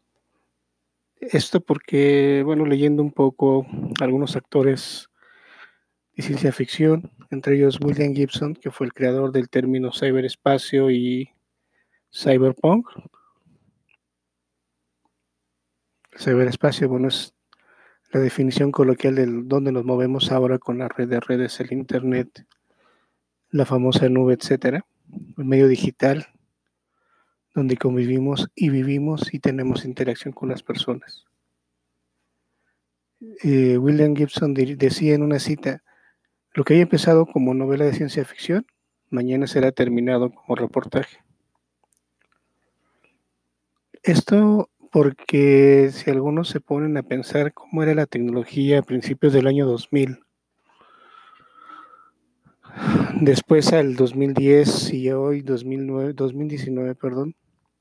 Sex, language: male, Spanish